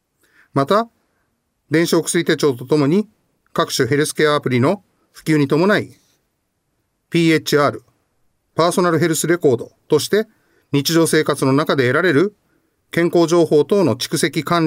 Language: Japanese